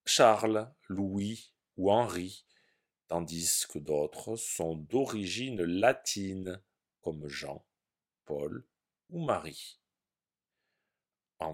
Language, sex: French, male